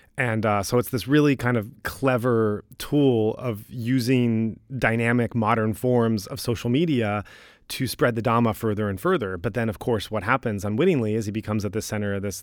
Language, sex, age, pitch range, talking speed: English, male, 30-49, 110-130 Hz, 195 wpm